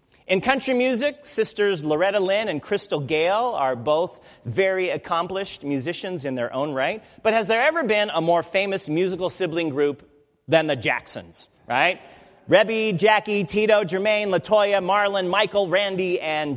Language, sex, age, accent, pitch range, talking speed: English, male, 40-59, American, 145-210 Hz, 150 wpm